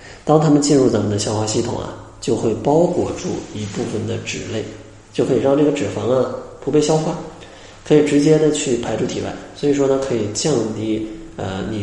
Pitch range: 105-130 Hz